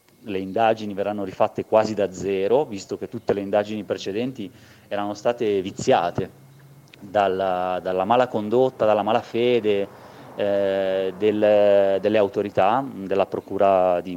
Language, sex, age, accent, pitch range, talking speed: Italian, male, 30-49, native, 95-110 Hz, 125 wpm